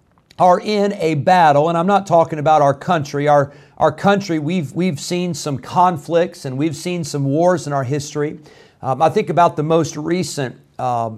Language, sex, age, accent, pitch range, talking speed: English, male, 50-69, American, 135-170 Hz, 190 wpm